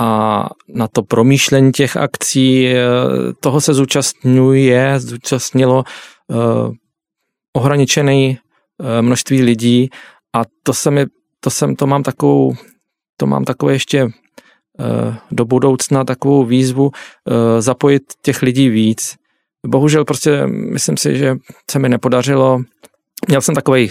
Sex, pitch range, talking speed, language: male, 120-140 Hz, 125 wpm, Czech